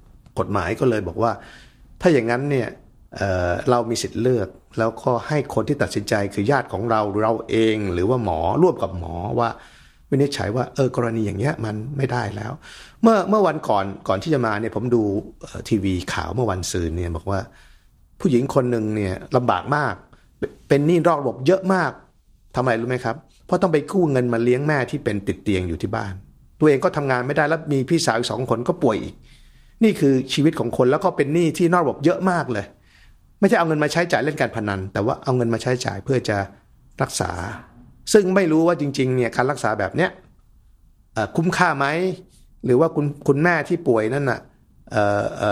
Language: Thai